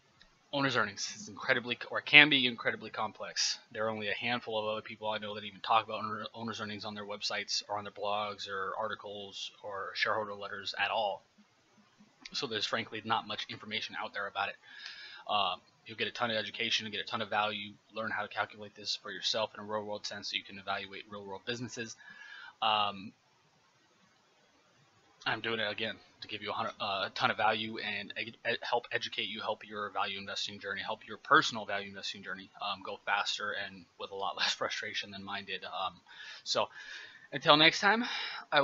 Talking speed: 195 wpm